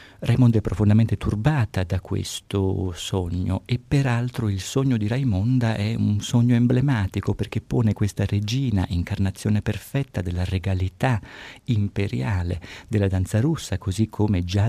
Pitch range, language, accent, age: 90-110 Hz, Italian, native, 50-69